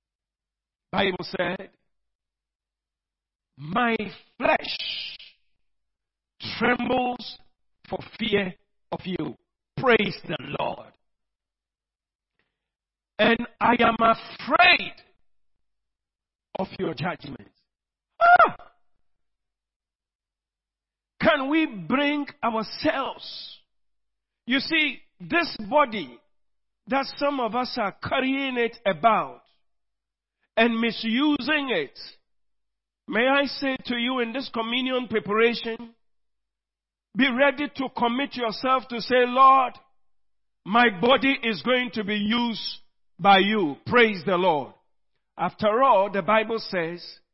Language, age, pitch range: English, 50-69, 195-255 Hz